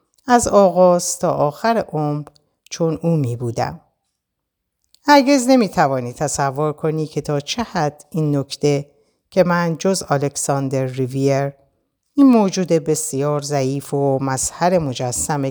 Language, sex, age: Persian, female, 50-69